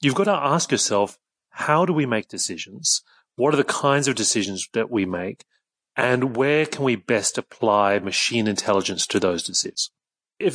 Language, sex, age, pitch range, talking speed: English, male, 30-49, 105-140 Hz, 175 wpm